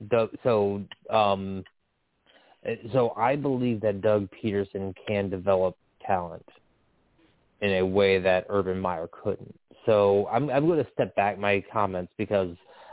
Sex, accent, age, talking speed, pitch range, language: male, American, 20-39, 130 wpm, 95-105 Hz, English